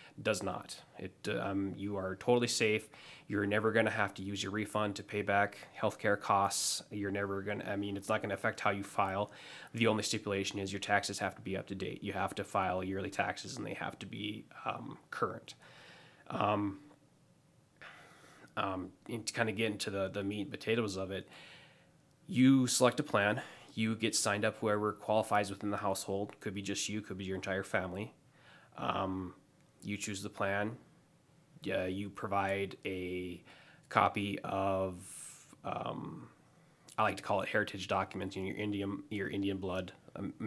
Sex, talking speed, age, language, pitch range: male, 180 wpm, 20-39, English, 95-105 Hz